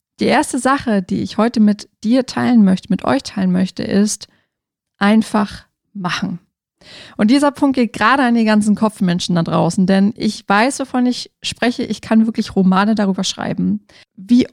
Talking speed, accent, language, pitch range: 170 wpm, German, German, 195-240 Hz